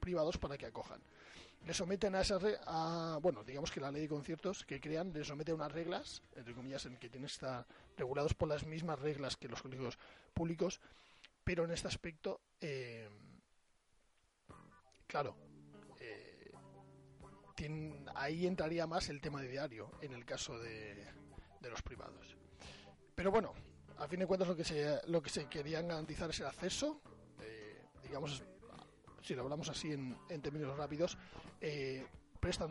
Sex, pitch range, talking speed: male, 135-175 Hz, 165 wpm